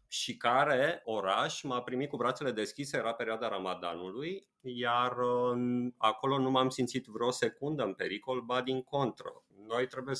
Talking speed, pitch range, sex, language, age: 145 wpm, 105-130 Hz, male, Romanian, 30-49